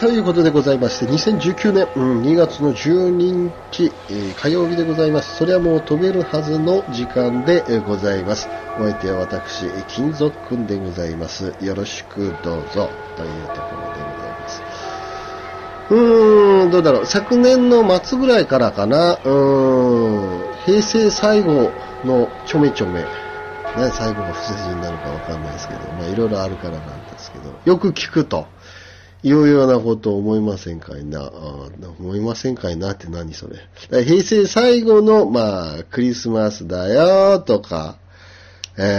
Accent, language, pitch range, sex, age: native, Japanese, 95-160 Hz, male, 40-59